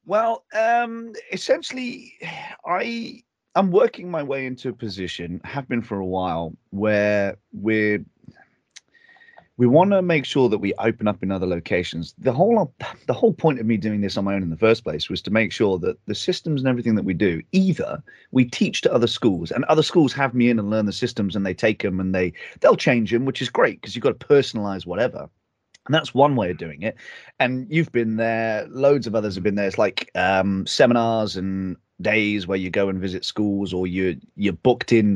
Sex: male